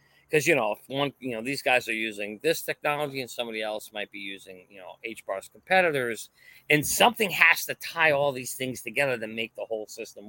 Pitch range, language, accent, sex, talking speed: 110-150 Hz, English, American, male, 215 wpm